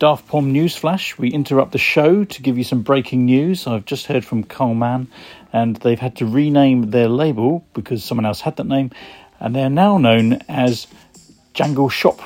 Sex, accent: male, British